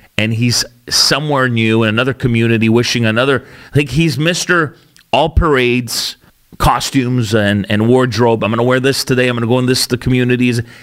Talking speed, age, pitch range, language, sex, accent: 165 wpm, 40-59, 110-145 Hz, English, male, American